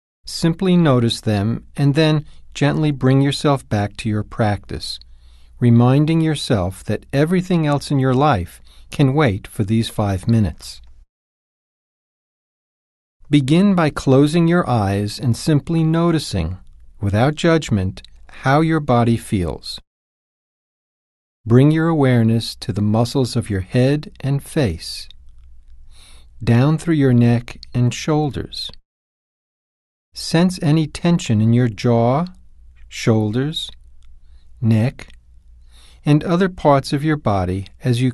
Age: 40-59